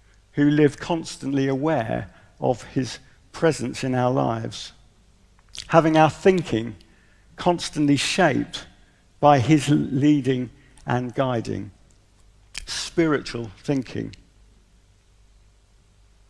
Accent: British